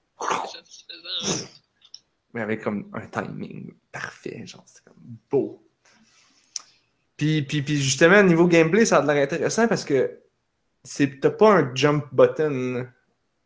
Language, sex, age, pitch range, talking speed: French, male, 20-39, 115-150 Hz, 135 wpm